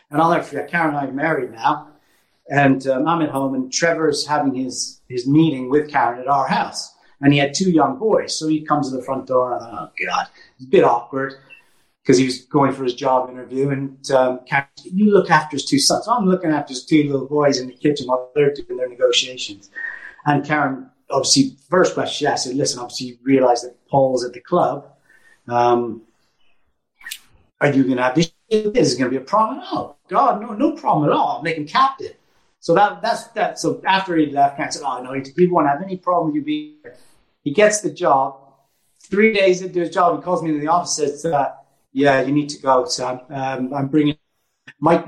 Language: English